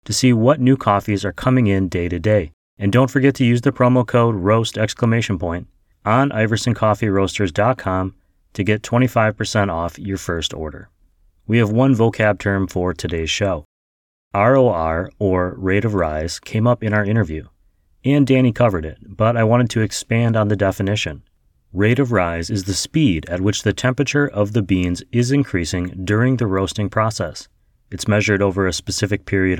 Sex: male